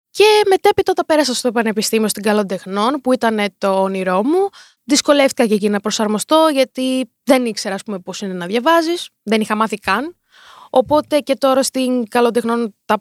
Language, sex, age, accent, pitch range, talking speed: Greek, female, 20-39, native, 215-295 Hz, 160 wpm